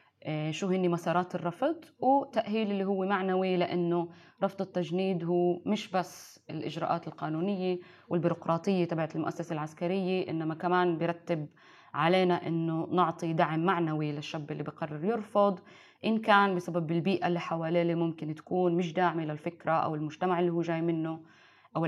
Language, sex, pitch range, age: Arabic, female, 165-190 Hz, 20-39